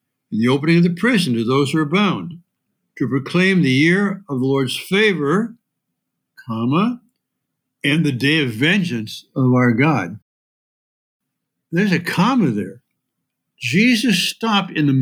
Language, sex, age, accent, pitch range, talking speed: English, male, 60-79, American, 140-205 Hz, 145 wpm